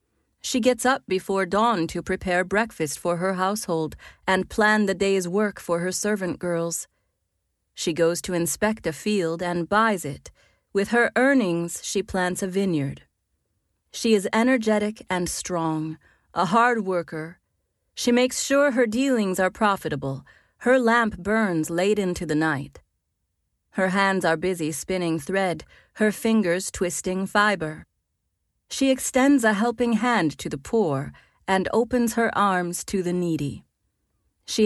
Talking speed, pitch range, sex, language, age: 145 wpm, 165-215 Hz, female, English, 30-49